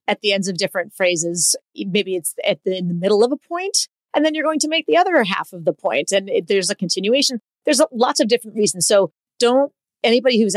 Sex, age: female, 30-49